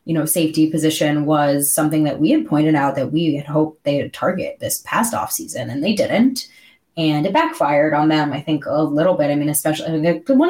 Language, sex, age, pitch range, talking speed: English, female, 20-39, 150-225 Hz, 225 wpm